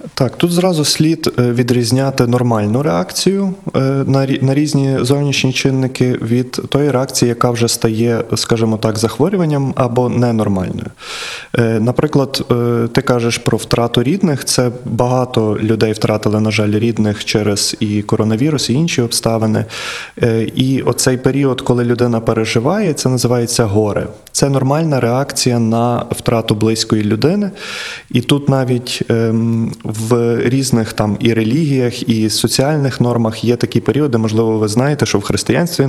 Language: Ukrainian